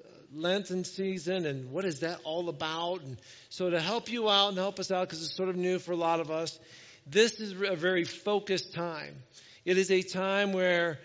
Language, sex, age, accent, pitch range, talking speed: English, male, 50-69, American, 150-185 Hz, 210 wpm